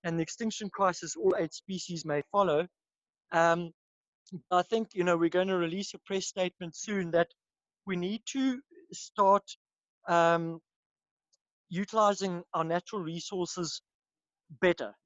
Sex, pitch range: male, 165-195 Hz